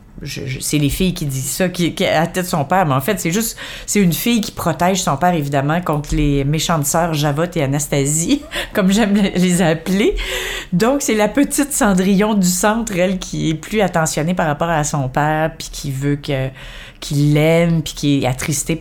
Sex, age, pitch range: female, 30-49, 155-200 Hz